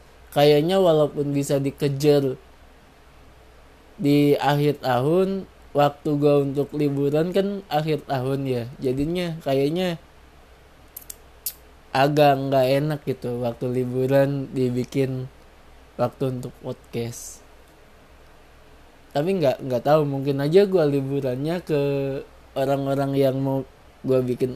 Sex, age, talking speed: male, 20-39, 100 wpm